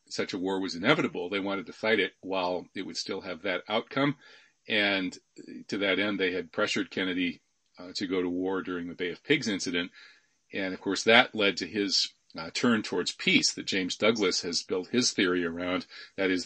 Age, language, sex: 40-59, English, male